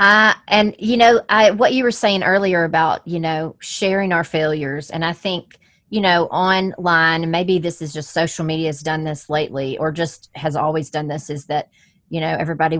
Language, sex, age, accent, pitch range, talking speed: English, female, 30-49, American, 160-205 Hz, 200 wpm